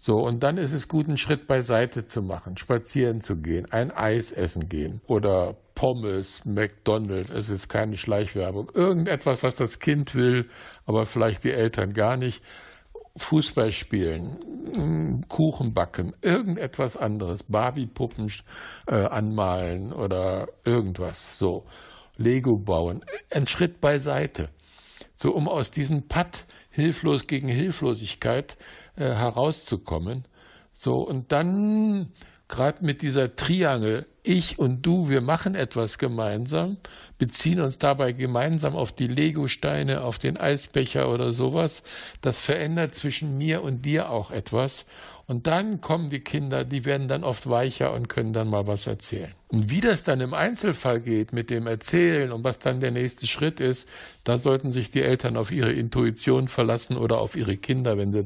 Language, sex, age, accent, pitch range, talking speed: German, male, 60-79, German, 110-145 Hz, 150 wpm